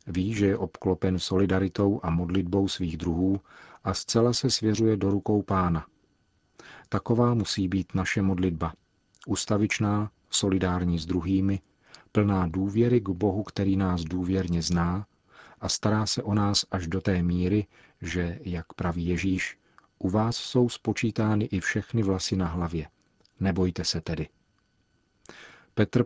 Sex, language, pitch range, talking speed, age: male, Czech, 90-105 Hz, 135 wpm, 40-59